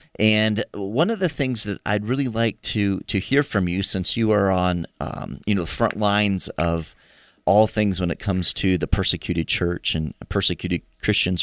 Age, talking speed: 30-49, 195 wpm